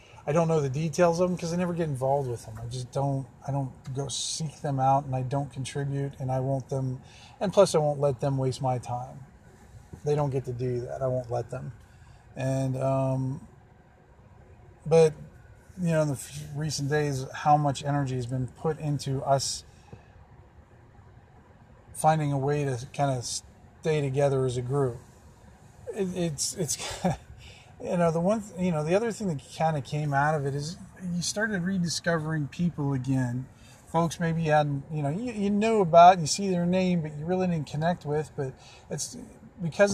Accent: American